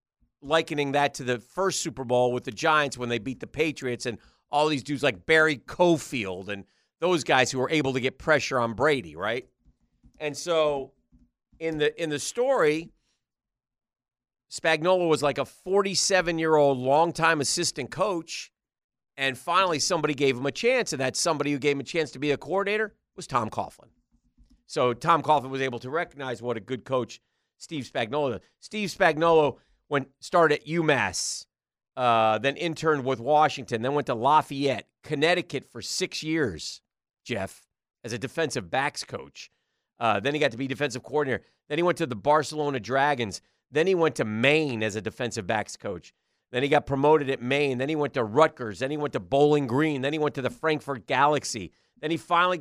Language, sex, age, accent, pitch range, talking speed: English, male, 40-59, American, 130-160 Hz, 185 wpm